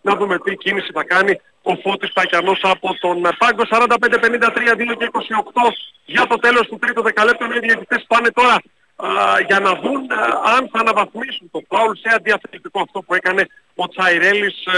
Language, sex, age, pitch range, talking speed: Greek, male, 40-59, 195-240 Hz, 160 wpm